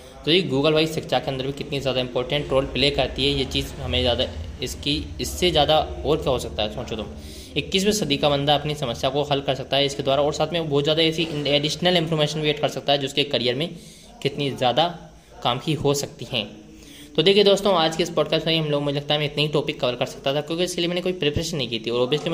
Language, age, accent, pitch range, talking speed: Hindi, 20-39, native, 130-160 Hz, 260 wpm